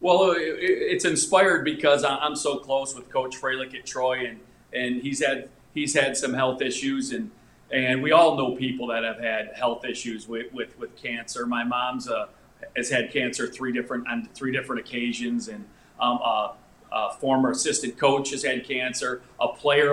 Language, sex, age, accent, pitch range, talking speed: English, male, 40-59, American, 125-145 Hz, 180 wpm